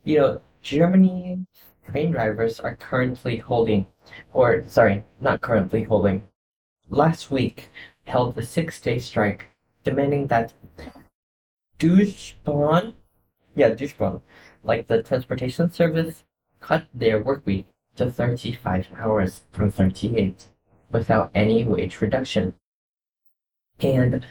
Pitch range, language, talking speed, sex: 105-145 Hz, English, 105 wpm, male